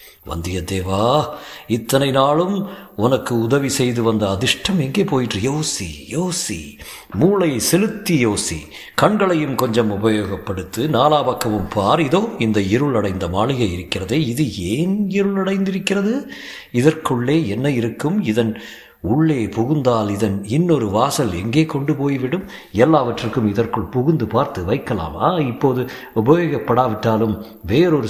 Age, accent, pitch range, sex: 50-69, native, 105-160 Hz, male